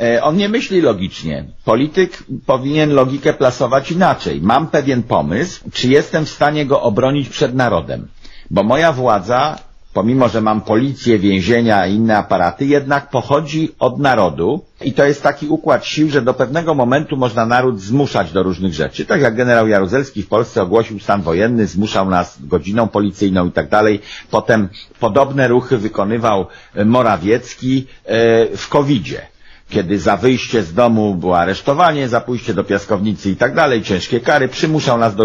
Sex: male